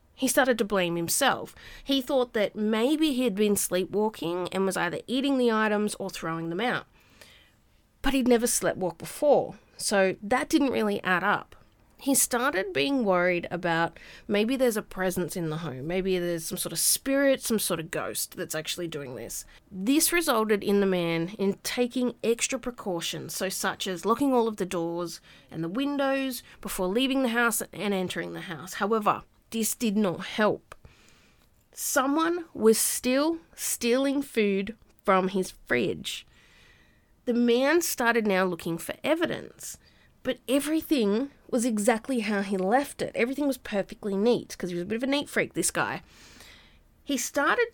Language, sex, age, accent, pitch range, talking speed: English, female, 30-49, Australian, 185-260 Hz, 165 wpm